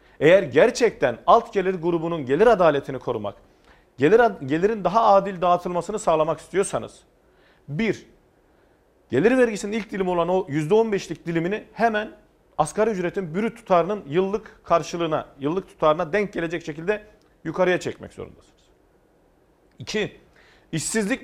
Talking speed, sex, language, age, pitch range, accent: 120 wpm, male, Turkish, 40-59, 155-210 Hz, native